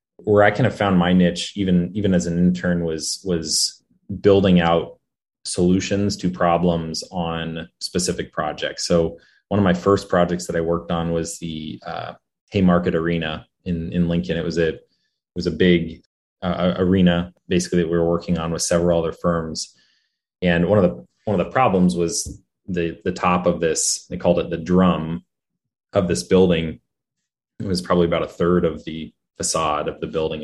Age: 20-39